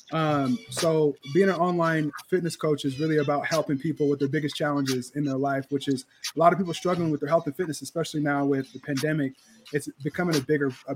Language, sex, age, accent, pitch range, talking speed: English, male, 20-39, American, 140-160 Hz, 225 wpm